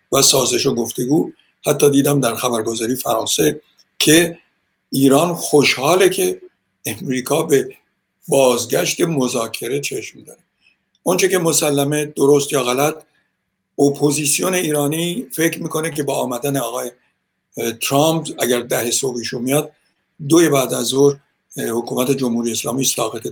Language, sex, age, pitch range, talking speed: Persian, male, 60-79, 125-165 Hz, 120 wpm